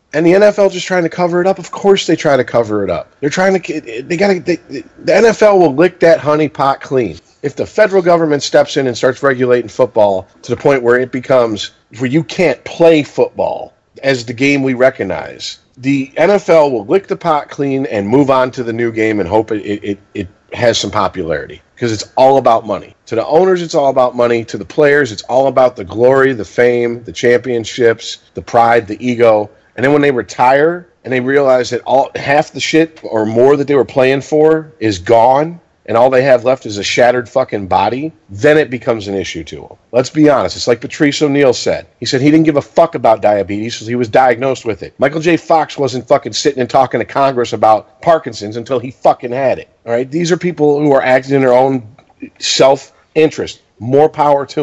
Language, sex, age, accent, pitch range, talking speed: English, male, 40-59, American, 120-155 Hz, 220 wpm